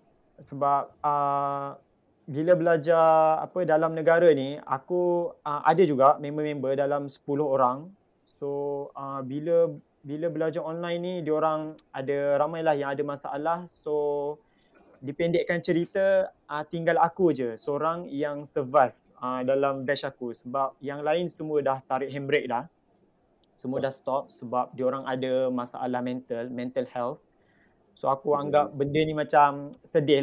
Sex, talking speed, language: male, 135 wpm, Malay